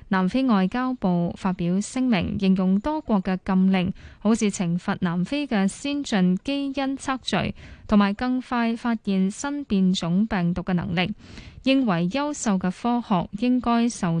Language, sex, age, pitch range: Chinese, female, 20-39, 185-235 Hz